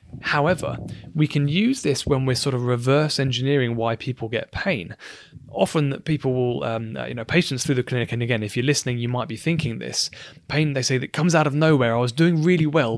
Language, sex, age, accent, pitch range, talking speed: English, male, 20-39, British, 120-145 Hz, 225 wpm